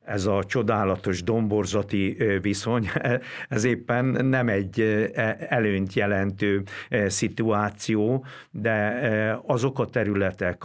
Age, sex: 60-79, male